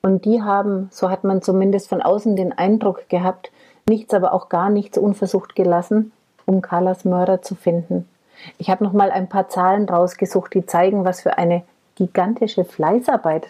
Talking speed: 175 wpm